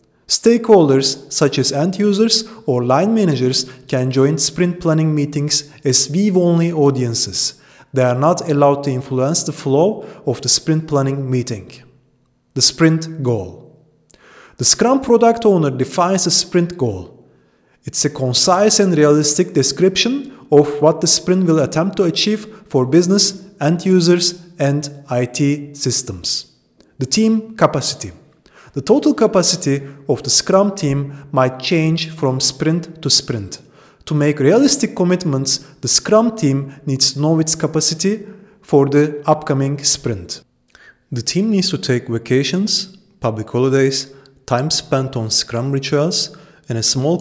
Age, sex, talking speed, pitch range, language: 30-49, male, 135 wpm, 130-175 Hz, English